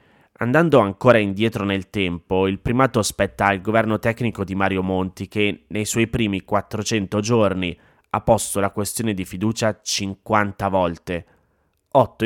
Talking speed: 140 wpm